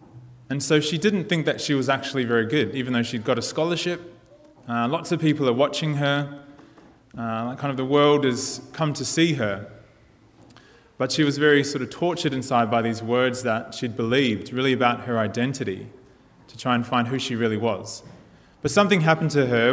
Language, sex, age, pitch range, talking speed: English, male, 20-39, 120-145 Hz, 200 wpm